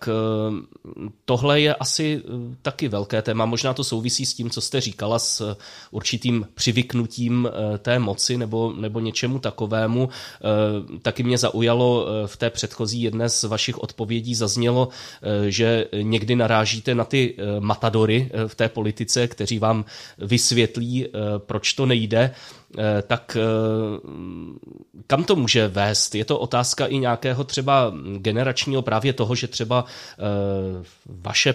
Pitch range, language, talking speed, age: 105-120 Hz, Czech, 130 wpm, 20-39